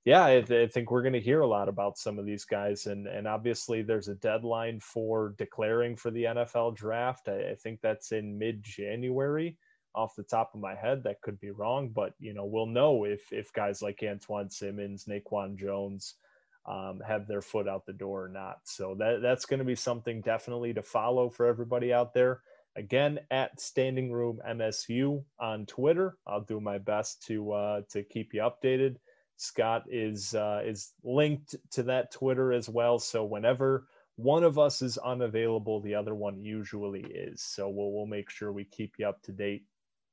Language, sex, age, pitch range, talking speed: English, male, 20-39, 105-125 Hz, 190 wpm